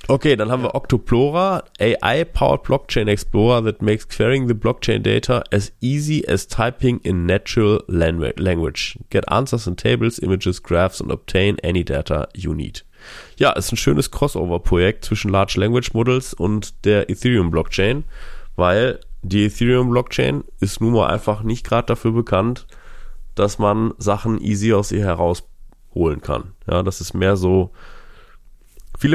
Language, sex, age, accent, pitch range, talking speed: German, male, 30-49, German, 90-115 Hz, 150 wpm